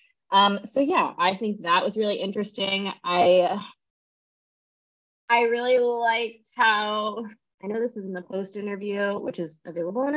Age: 20-39